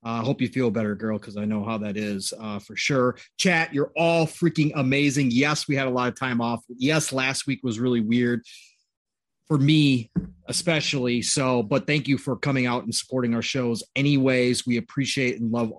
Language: English